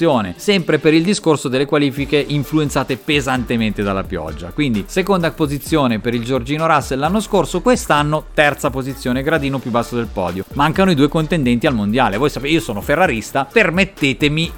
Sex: male